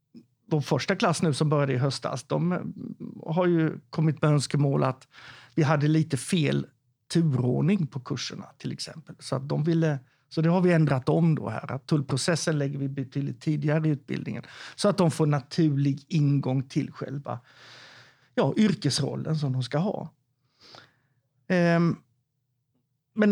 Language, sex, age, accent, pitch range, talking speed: English, male, 50-69, Swedish, 130-160 Hz, 150 wpm